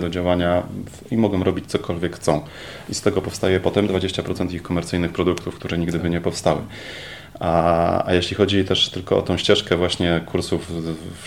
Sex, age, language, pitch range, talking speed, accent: male, 30-49, Polish, 85-100 Hz, 180 wpm, native